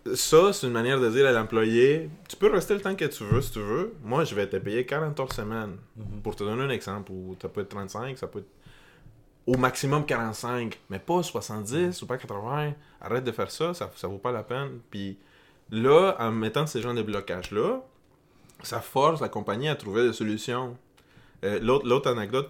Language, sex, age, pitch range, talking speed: French, male, 20-39, 105-130 Hz, 210 wpm